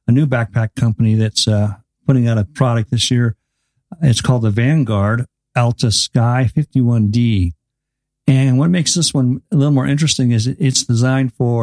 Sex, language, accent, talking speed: male, English, American, 165 wpm